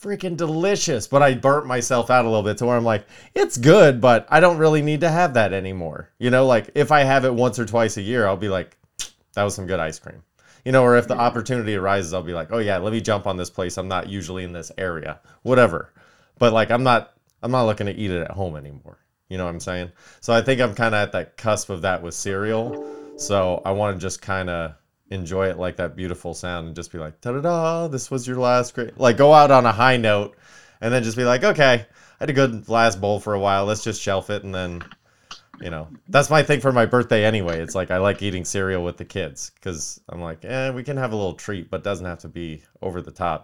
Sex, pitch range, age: male, 90-125 Hz, 30-49